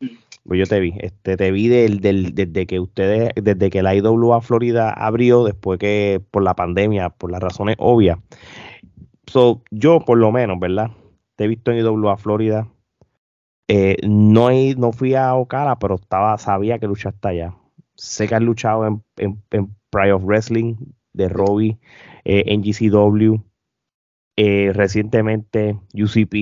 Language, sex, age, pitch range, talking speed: Spanish, male, 20-39, 100-120 Hz, 160 wpm